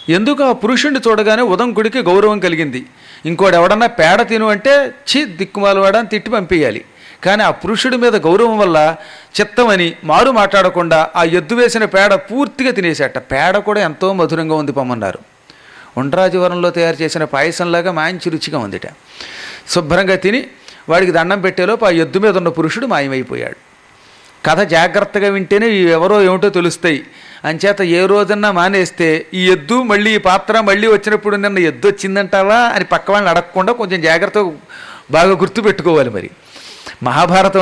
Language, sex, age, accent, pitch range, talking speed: Telugu, male, 40-59, native, 175-220 Hz, 135 wpm